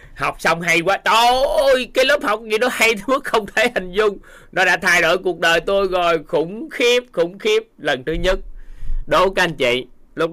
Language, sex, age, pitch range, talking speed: Vietnamese, male, 20-39, 150-215 Hz, 215 wpm